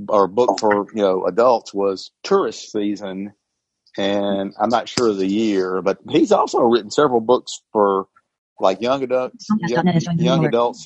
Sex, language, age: male, English, 50-69